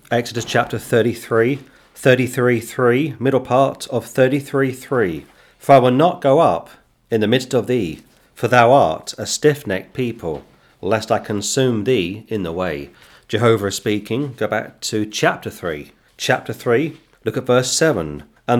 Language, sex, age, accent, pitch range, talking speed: English, male, 40-59, British, 105-130 Hz, 160 wpm